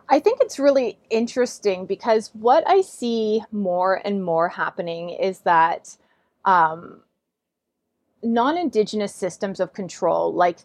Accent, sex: American, female